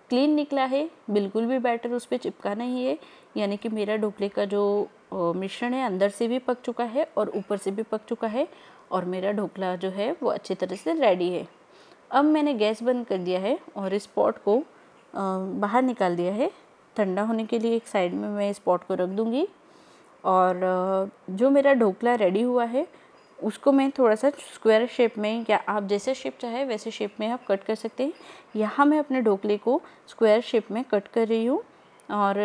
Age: 20-39